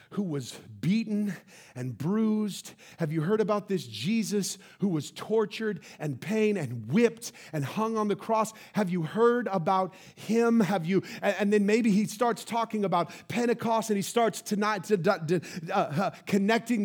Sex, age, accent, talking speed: male, 40-59, American, 175 wpm